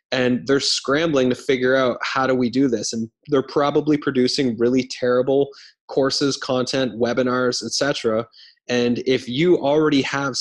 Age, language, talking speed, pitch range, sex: 20-39, English, 150 wpm, 120-135 Hz, male